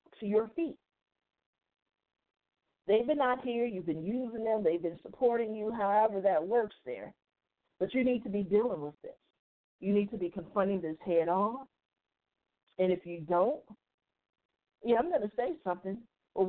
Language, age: English, 50-69